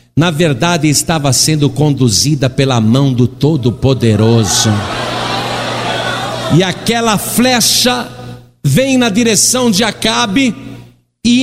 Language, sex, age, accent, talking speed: Portuguese, male, 50-69, Brazilian, 95 wpm